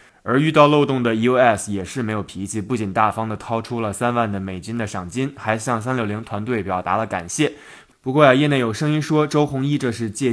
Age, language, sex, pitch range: 20-39, Chinese, male, 115-145 Hz